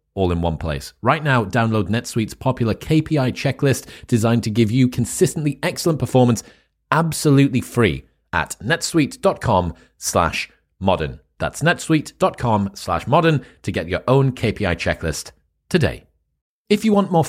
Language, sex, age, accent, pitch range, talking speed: English, male, 30-49, British, 100-130 Hz, 130 wpm